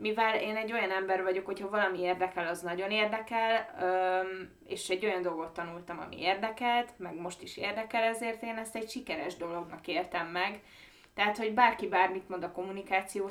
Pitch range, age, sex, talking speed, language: 175-220 Hz, 20-39, female, 170 wpm, Hungarian